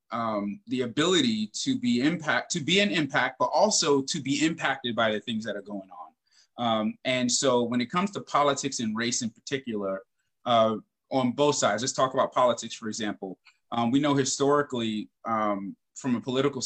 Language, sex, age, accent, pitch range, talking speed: English, male, 20-39, American, 115-140 Hz, 185 wpm